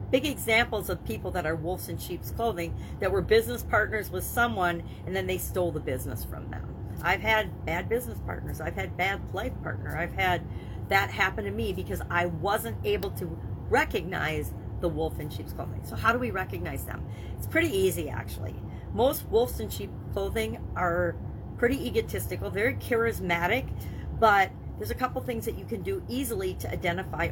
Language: English